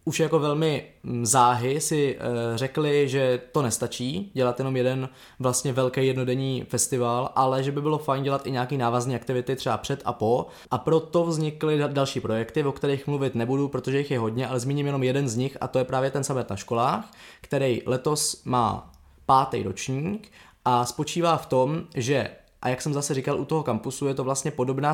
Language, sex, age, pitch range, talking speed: Czech, male, 20-39, 125-145 Hz, 190 wpm